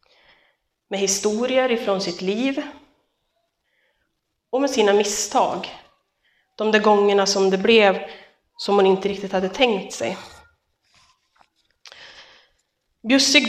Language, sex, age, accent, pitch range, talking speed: Swedish, female, 30-49, native, 200-240 Hz, 100 wpm